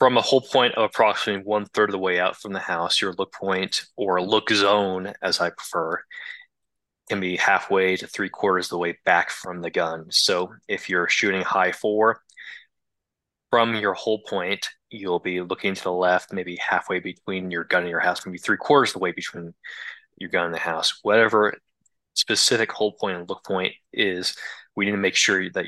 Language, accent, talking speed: English, American, 195 wpm